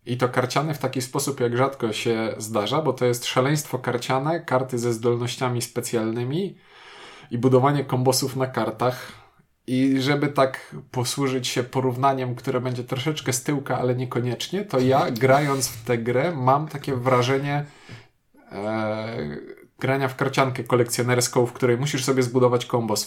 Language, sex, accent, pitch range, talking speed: Polish, male, native, 120-135 Hz, 150 wpm